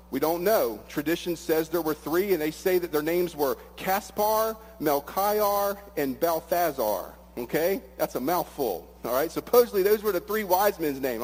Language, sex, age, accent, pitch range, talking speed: English, male, 40-59, American, 150-185 Hz, 175 wpm